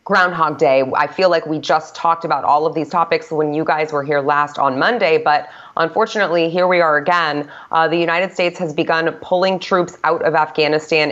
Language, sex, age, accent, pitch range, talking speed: English, female, 20-39, American, 145-170 Hz, 205 wpm